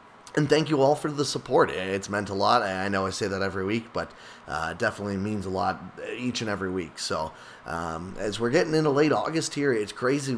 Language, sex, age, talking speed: English, male, 20-39, 225 wpm